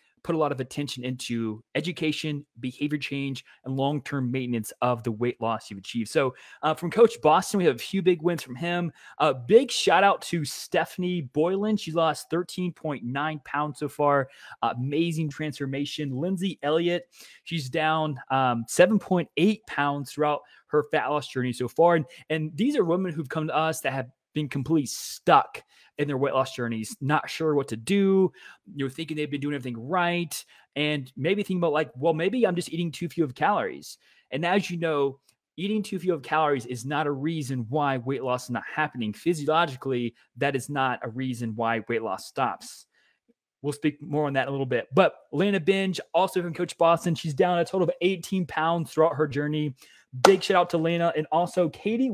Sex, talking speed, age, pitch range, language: male, 195 wpm, 20-39, 135-170 Hz, English